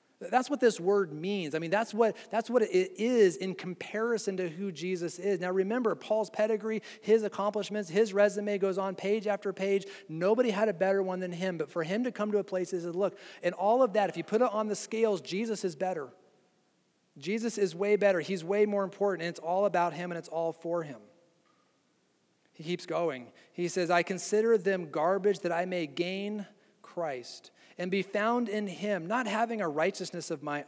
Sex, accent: male, American